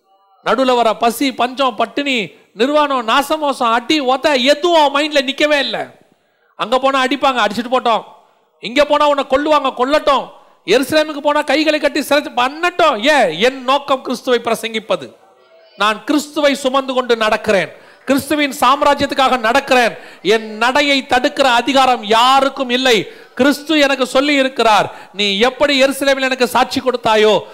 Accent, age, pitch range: native, 40-59, 185-275 Hz